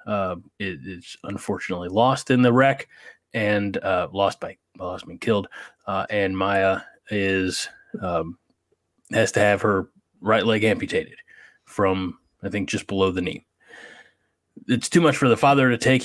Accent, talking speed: American, 155 wpm